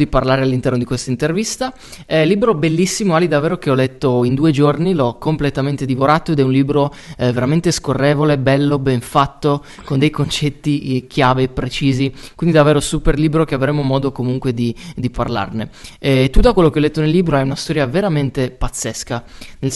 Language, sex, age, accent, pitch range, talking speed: Italian, male, 20-39, native, 130-155 Hz, 195 wpm